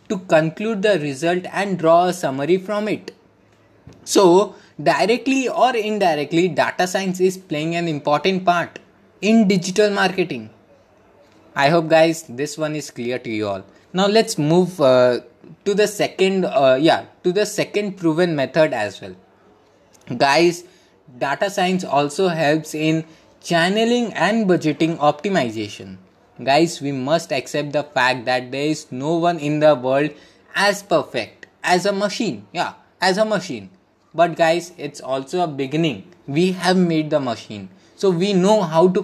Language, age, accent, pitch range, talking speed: English, 20-39, Indian, 150-200 Hz, 150 wpm